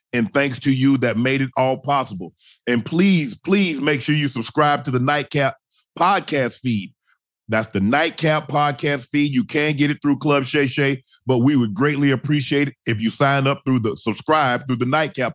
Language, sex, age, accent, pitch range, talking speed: English, male, 40-59, American, 130-150 Hz, 195 wpm